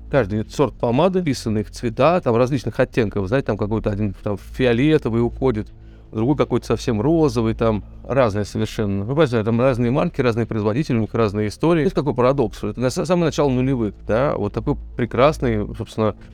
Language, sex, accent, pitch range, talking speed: Russian, male, native, 105-130 Hz, 175 wpm